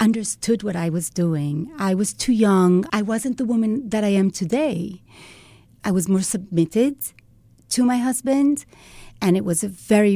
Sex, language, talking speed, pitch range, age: female, English, 170 wpm, 165-210 Hz, 40-59